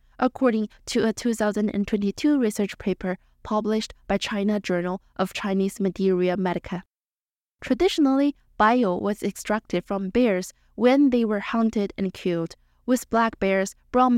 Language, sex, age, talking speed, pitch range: English, female, 20-39, 125 wpm, 195-245 Hz